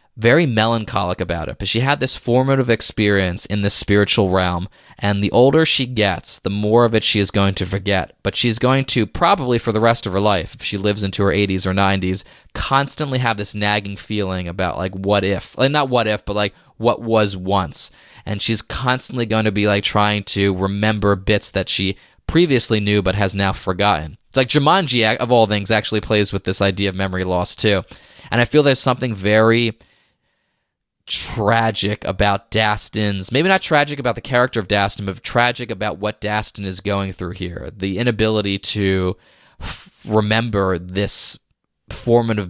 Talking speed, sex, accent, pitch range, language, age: 185 wpm, male, American, 100-115 Hz, English, 20-39